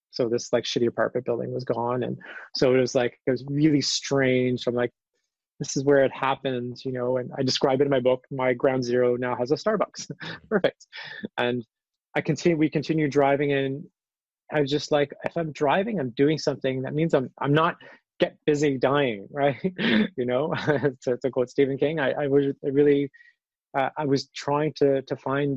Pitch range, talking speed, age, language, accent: 125-150 Hz, 200 wpm, 20-39, English, American